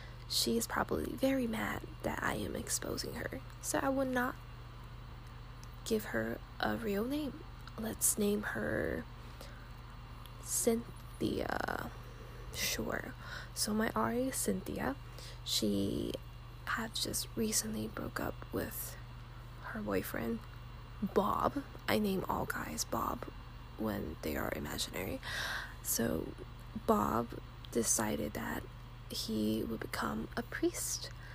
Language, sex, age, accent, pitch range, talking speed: English, female, 10-29, American, 110-130 Hz, 110 wpm